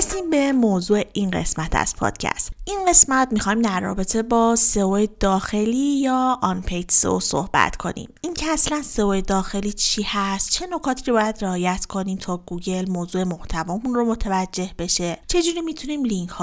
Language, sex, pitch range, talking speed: Persian, female, 180-230 Hz, 155 wpm